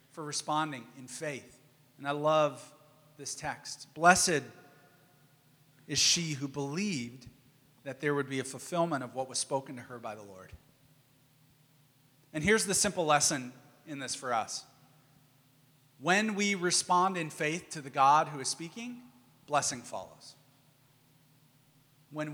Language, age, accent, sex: English, 40-59, American, male